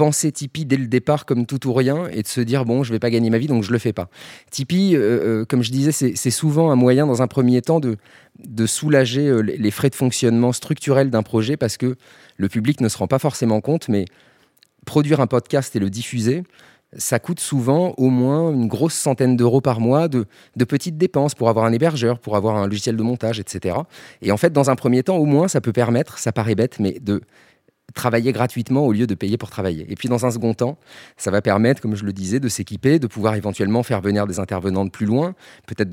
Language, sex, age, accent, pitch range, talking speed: French, male, 30-49, French, 110-135 Hz, 250 wpm